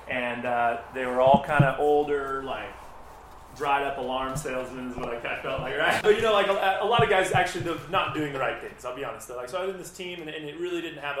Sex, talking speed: male, 275 wpm